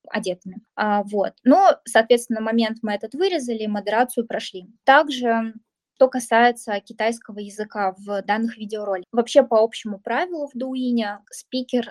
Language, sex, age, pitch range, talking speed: Russian, female, 20-39, 210-250 Hz, 130 wpm